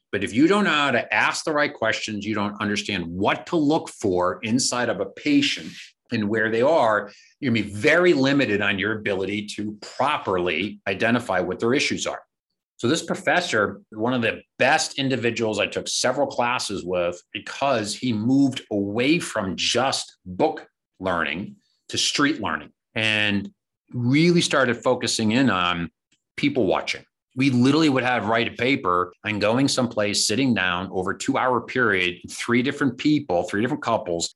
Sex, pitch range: male, 105-135 Hz